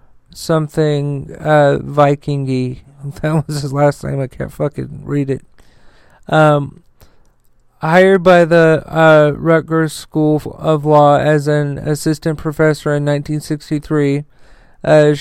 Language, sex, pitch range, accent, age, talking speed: English, male, 145-160 Hz, American, 40-59, 110 wpm